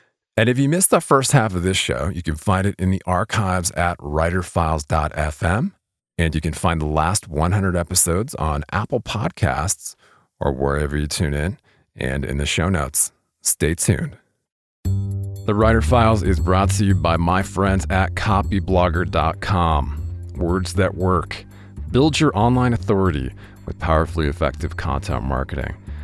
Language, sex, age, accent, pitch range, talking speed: English, male, 40-59, American, 80-100 Hz, 150 wpm